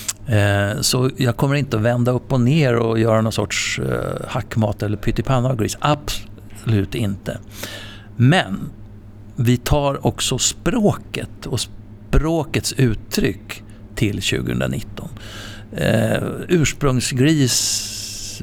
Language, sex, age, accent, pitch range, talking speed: Swedish, male, 60-79, native, 105-130 Hz, 100 wpm